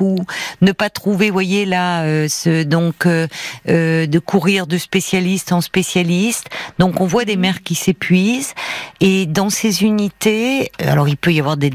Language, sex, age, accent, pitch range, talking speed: French, female, 50-69, French, 155-195 Hz, 175 wpm